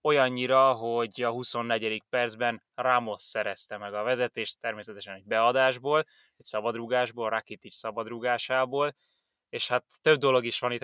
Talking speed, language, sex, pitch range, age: 140 wpm, Hungarian, male, 110-130 Hz, 20-39